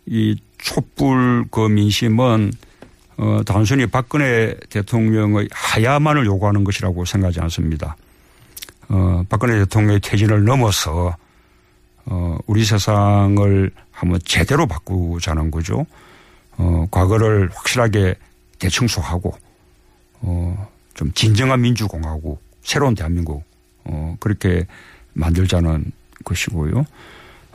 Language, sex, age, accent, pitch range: Korean, male, 50-69, native, 85-110 Hz